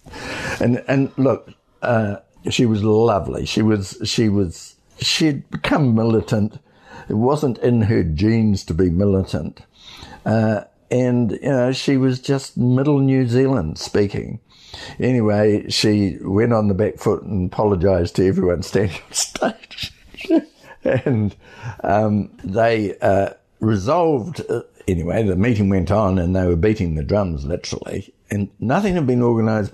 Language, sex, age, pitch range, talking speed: English, male, 60-79, 95-120 Hz, 140 wpm